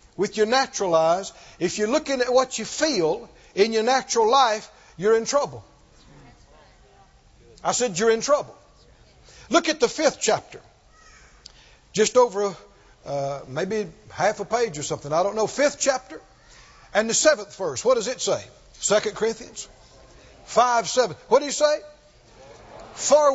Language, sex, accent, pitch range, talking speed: English, male, American, 200-285 Hz, 150 wpm